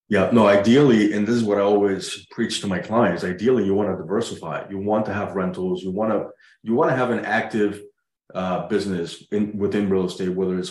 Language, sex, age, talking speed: English, male, 30-49, 220 wpm